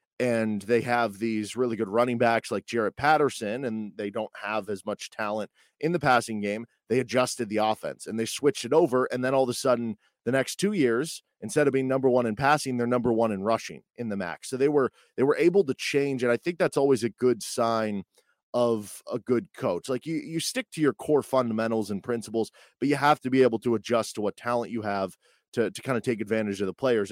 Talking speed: 240 wpm